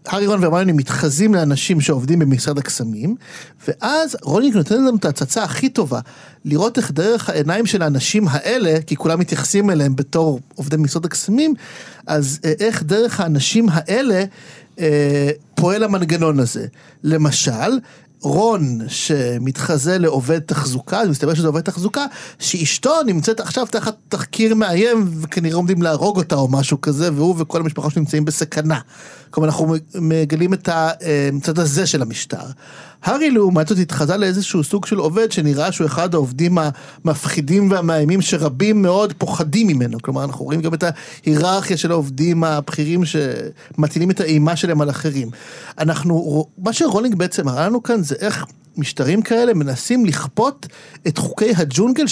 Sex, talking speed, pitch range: male, 145 wpm, 150-205 Hz